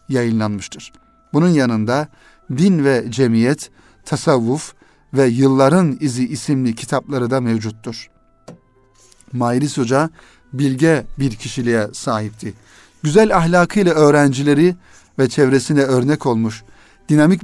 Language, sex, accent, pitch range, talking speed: Turkish, male, native, 120-155 Hz, 95 wpm